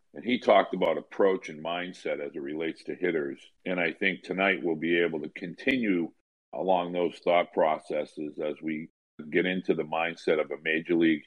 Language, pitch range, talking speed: English, 85-95 Hz, 185 wpm